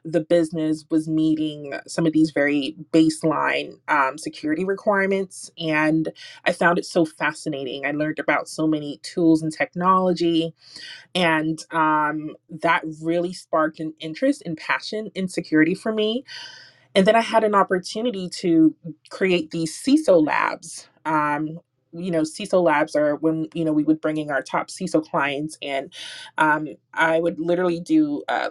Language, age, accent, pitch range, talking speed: English, 20-39, American, 155-185 Hz, 155 wpm